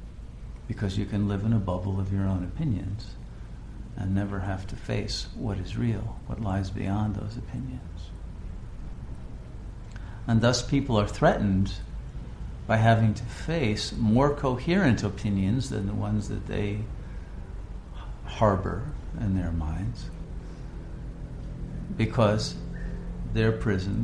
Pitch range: 85-110 Hz